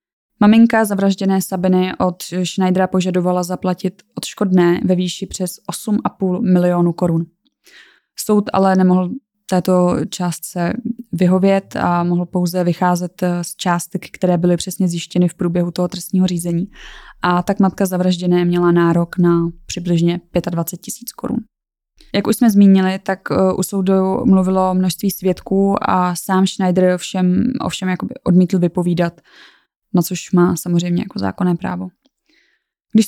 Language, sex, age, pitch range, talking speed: Czech, female, 20-39, 180-195 Hz, 130 wpm